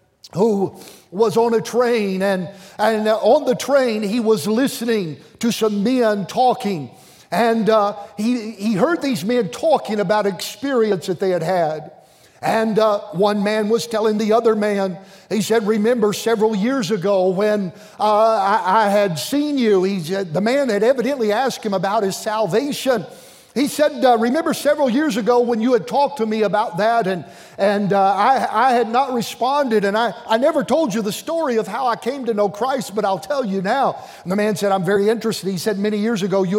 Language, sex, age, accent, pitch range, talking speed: English, male, 50-69, American, 195-245 Hz, 195 wpm